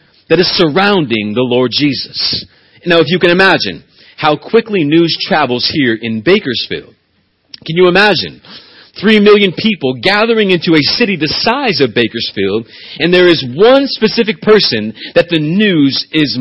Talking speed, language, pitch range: 155 wpm, English, 130-190 Hz